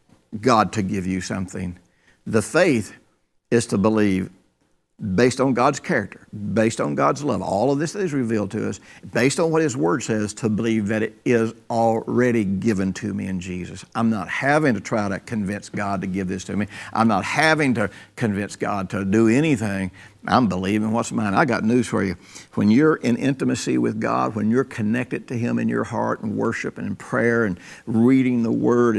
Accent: American